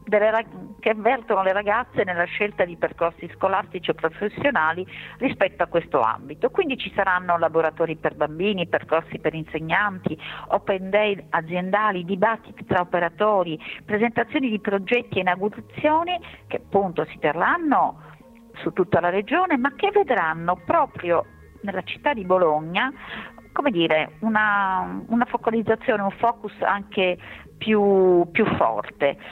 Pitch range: 165-220 Hz